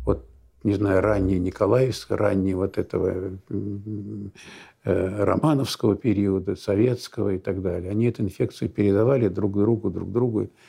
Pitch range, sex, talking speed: 95-115 Hz, male, 125 wpm